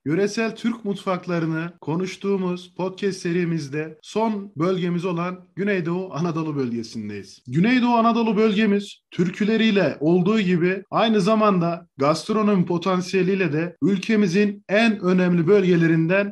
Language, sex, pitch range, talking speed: Turkish, male, 165-210 Hz, 100 wpm